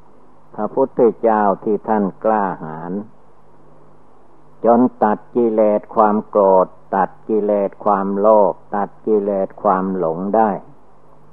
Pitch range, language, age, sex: 95-110 Hz, Thai, 60-79, male